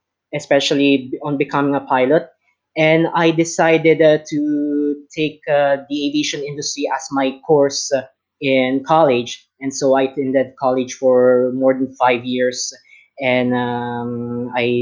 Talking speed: 140 wpm